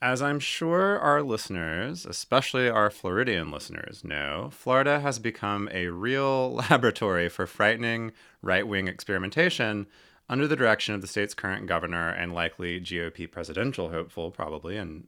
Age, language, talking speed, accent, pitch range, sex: 30-49, English, 140 wpm, American, 90-125 Hz, male